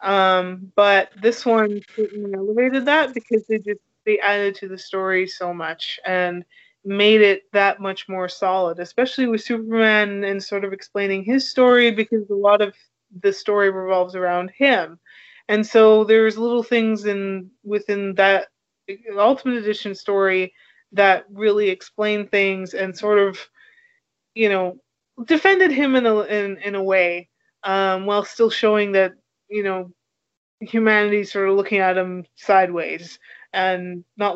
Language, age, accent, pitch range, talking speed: English, 20-39, American, 190-220 Hz, 150 wpm